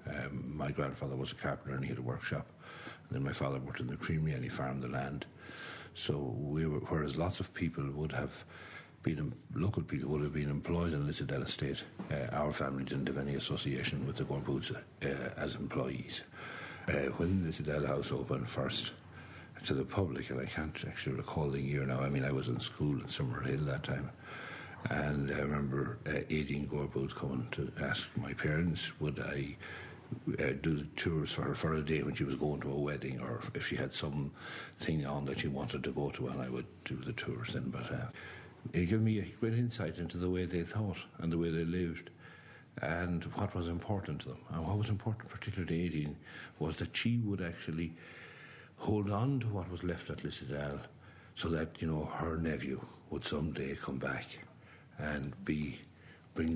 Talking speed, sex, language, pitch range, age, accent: 200 wpm, male, English, 70-85 Hz, 60-79, Irish